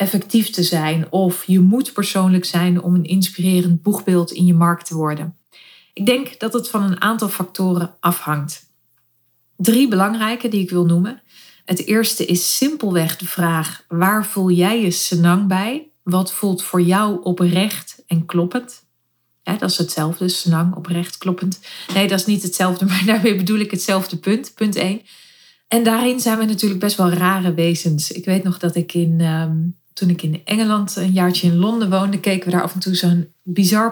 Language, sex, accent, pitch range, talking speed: Dutch, female, Dutch, 175-205 Hz, 180 wpm